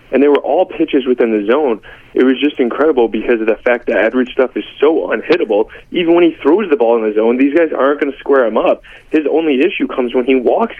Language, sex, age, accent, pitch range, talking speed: English, male, 20-39, American, 110-135 Hz, 255 wpm